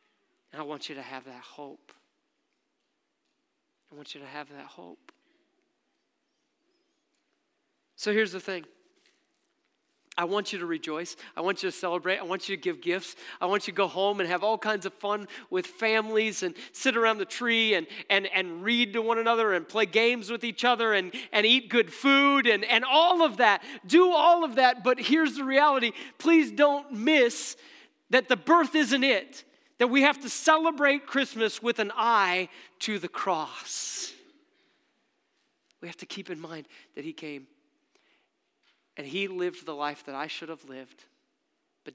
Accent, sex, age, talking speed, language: American, male, 40-59, 175 wpm, English